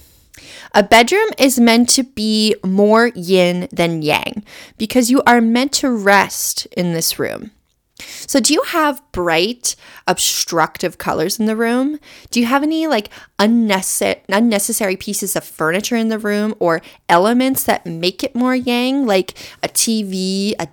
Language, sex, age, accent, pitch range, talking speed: English, female, 20-39, American, 185-255 Hz, 150 wpm